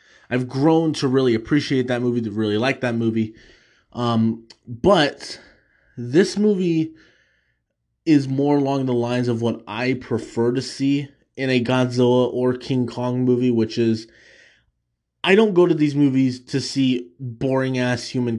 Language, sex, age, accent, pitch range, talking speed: English, male, 20-39, American, 120-165 Hz, 155 wpm